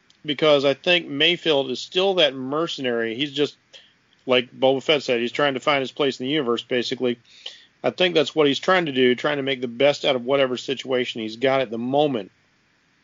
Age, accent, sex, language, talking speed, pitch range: 40-59, American, male, English, 210 wpm, 120-145 Hz